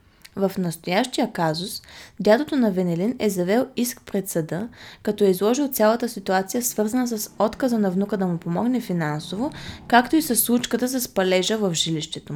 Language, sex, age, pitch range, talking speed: Bulgarian, female, 20-39, 175-220 Hz, 160 wpm